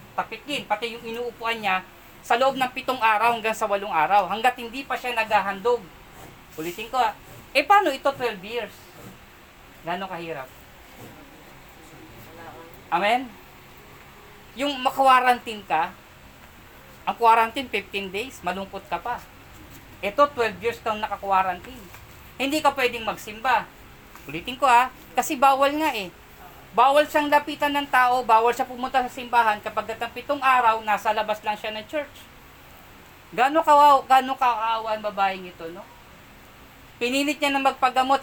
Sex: female